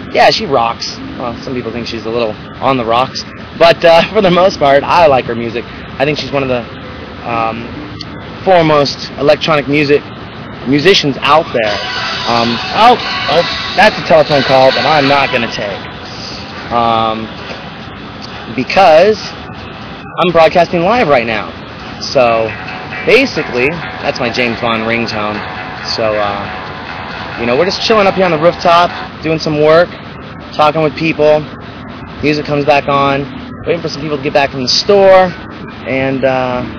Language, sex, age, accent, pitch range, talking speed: English, male, 30-49, American, 115-160 Hz, 155 wpm